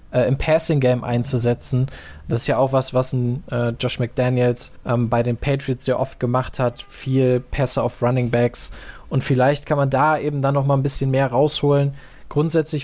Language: German